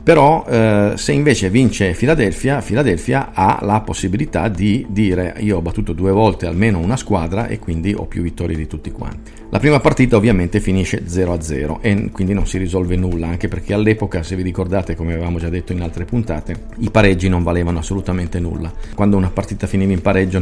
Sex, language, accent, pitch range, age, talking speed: male, Italian, native, 85-105 Hz, 40-59, 190 wpm